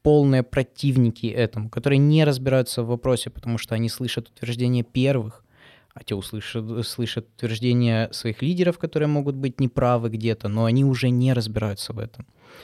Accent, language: native, Ukrainian